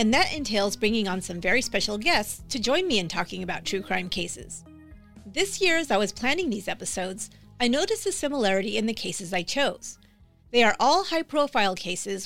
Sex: female